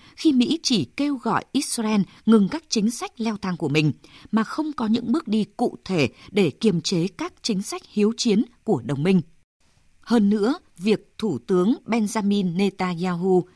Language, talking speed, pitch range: Vietnamese, 175 wpm, 175-235 Hz